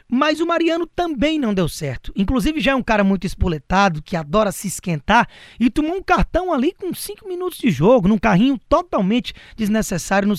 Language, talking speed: Portuguese, 190 wpm